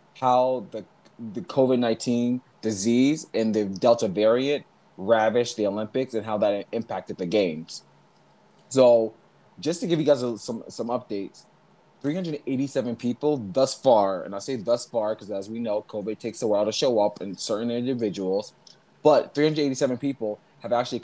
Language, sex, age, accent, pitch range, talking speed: English, male, 20-39, American, 110-130 Hz, 160 wpm